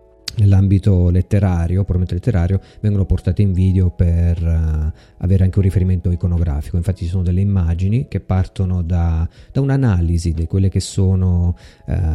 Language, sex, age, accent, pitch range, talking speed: Italian, male, 30-49, native, 85-100 Hz, 145 wpm